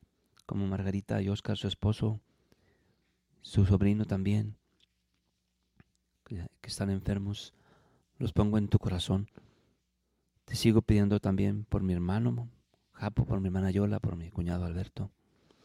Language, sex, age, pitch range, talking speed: Spanish, male, 40-59, 95-110 Hz, 125 wpm